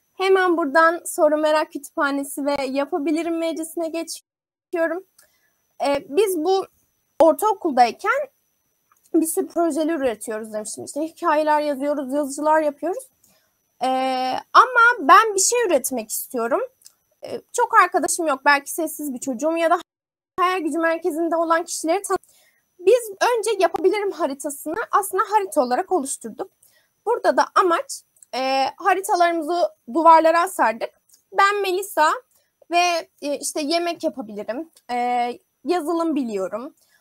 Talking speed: 115 wpm